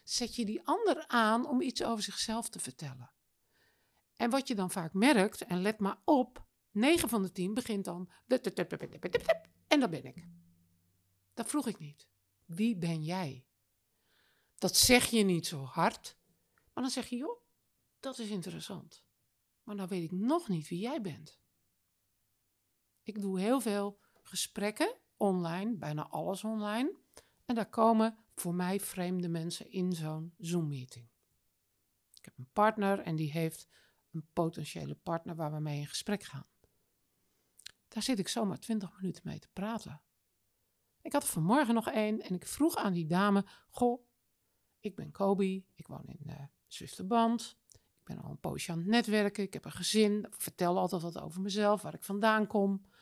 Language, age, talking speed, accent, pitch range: Dutch, 50-69, 165 wpm, Dutch, 160-225 Hz